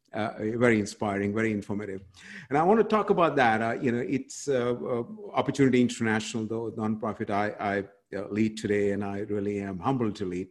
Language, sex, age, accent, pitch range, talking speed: English, male, 50-69, Indian, 100-120 Hz, 195 wpm